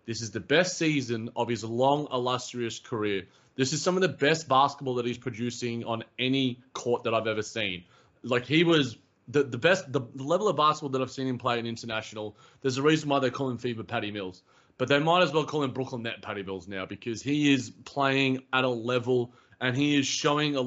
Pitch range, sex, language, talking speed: 115-135 Hz, male, English, 225 wpm